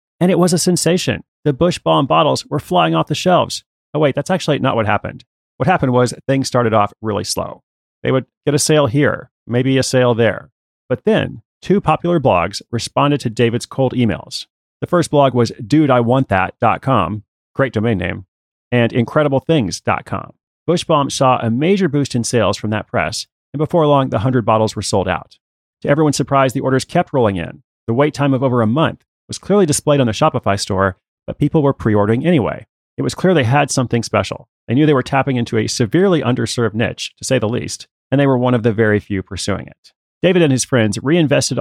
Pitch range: 110-145 Hz